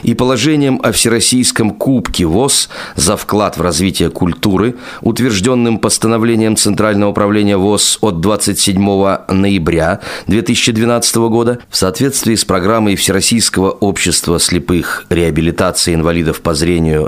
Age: 30-49